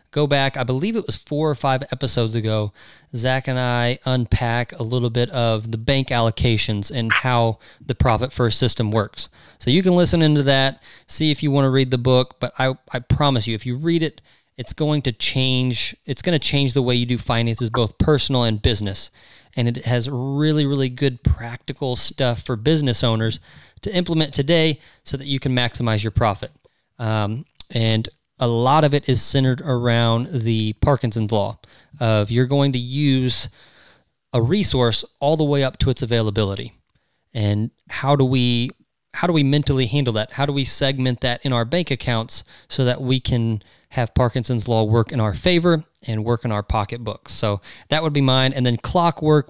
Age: 30-49